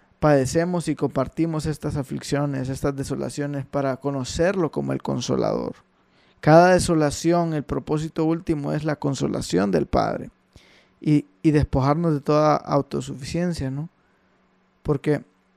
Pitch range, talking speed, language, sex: 135-155 Hz, 115 wpm, English, male